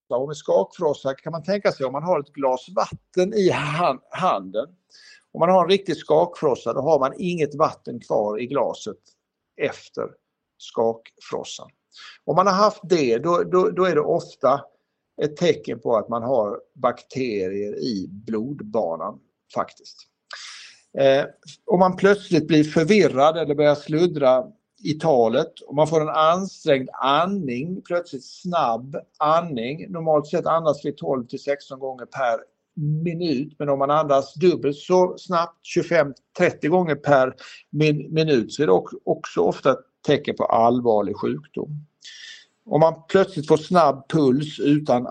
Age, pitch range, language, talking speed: 60-79, 135-175 Hz, Swedish, 145 wpm